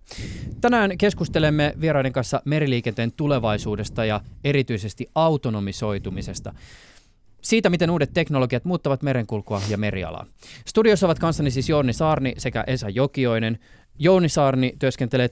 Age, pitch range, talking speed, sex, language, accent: 20-39, 110-145 Hz, 115 wpm, male, Finnish, native